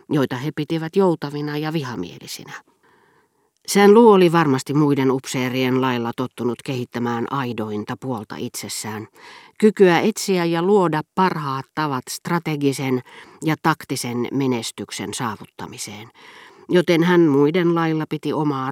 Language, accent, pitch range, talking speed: Finnish, native, 125-170 Hz, 110 wpm